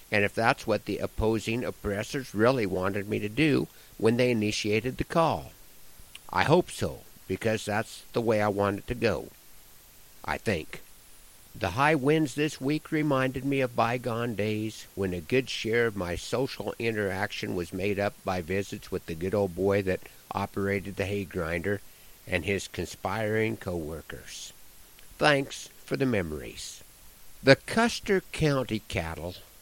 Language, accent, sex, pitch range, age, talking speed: English, American, male, 100-130 Hz, 60-79, 155 wpm